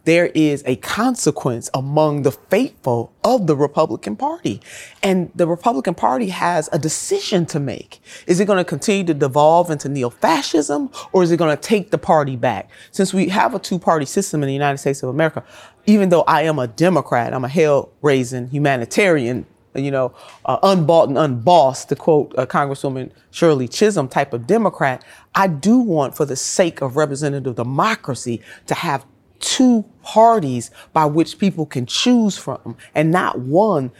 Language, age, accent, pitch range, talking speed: English, 30-49, American, 135-180 Hz, 170 wpm